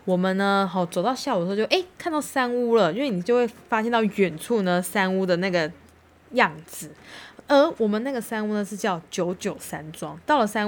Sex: female